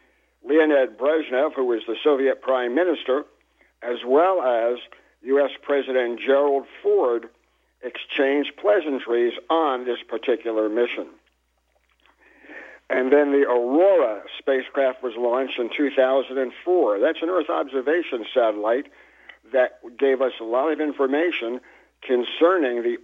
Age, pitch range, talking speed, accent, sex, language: 60-79, 125-155 Hz, 115 wpm, American, male, English